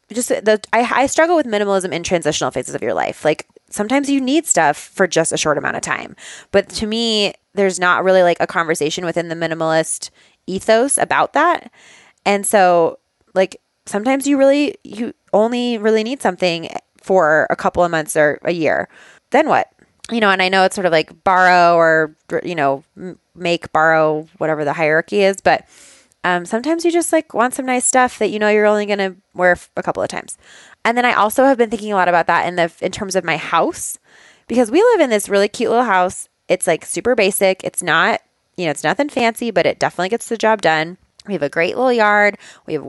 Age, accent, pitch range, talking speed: 20-39, American, 170-220 Hz, 215 wpm